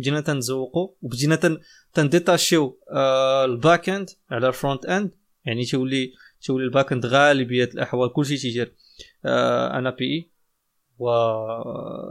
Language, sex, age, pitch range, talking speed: Arabic, male, 20-39, 130-165 Hz, 125 wpm